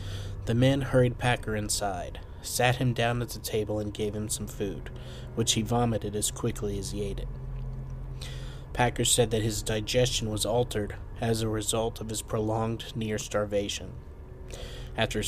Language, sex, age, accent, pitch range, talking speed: English, male, 30-49, American, 100-120 Hz, 155 wpm